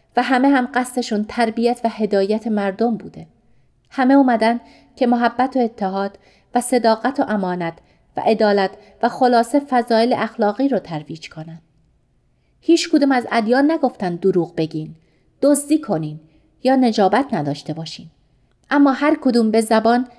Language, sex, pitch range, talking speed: Persian, female, 185-260 Hz, 135 wpm